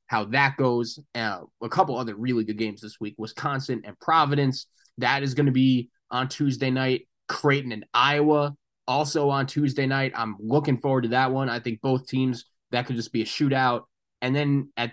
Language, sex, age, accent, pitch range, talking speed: English, male, 20-39, American, 110-135 Hz, 195 wpm